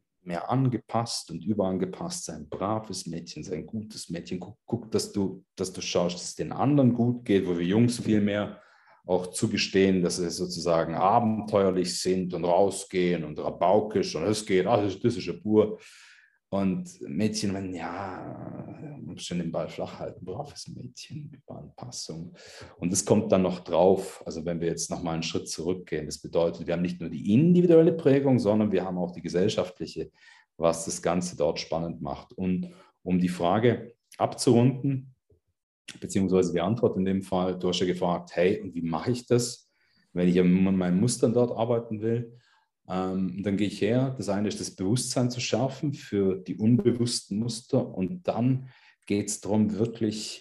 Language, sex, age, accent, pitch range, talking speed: German, male, 40-59, German, 90-115 Hz, 175 wpm